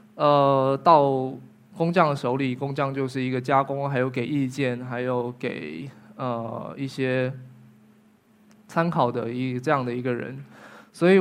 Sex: male